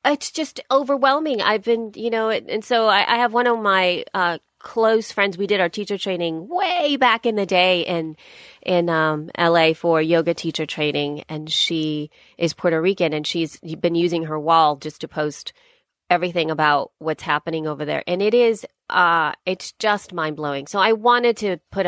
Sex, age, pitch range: female, 30-49, 155-195 Hz